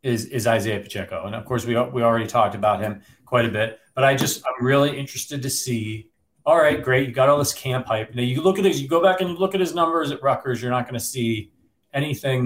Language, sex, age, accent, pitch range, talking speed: English, male, 30-49, American, 105-135 Hz, 260 wpm